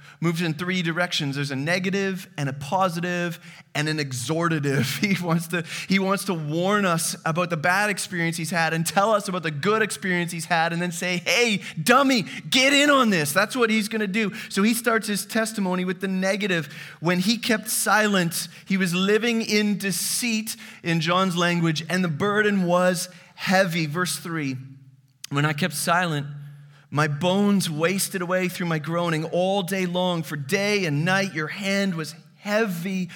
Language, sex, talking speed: English, male, 175 wpm